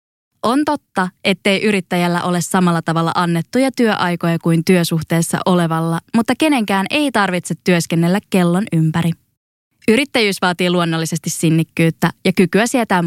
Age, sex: 20-39, female